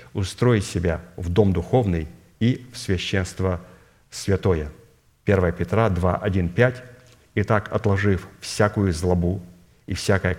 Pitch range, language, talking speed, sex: 90-110 Hz, Russian, 120 wpm, male